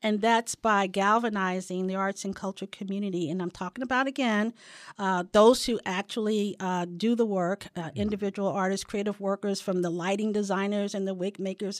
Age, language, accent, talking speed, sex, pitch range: 50-69, English, American, 190 wpm, female, 195-240 Hz